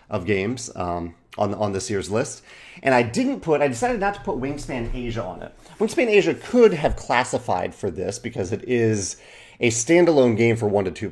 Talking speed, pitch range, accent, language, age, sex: 205 wpm, 100-125 Hz, American, English, 30-49, male